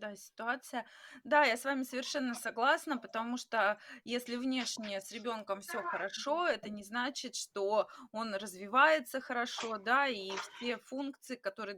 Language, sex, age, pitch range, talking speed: Russian, female, 20-39, 200-265 Hz, 145 wpm